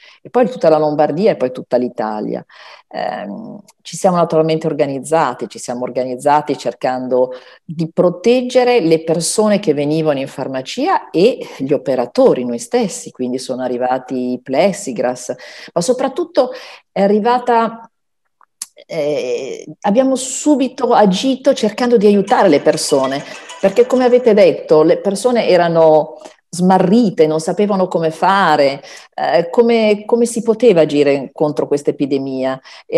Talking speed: 125 wpm